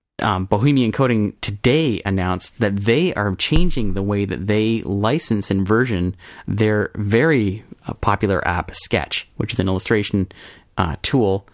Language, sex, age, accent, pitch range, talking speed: English, male, 20-39, American, 100-120 Hz, 145 wpm